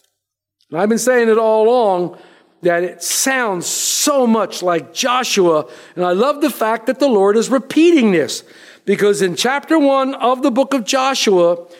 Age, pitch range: 50-69, 190-270 Hz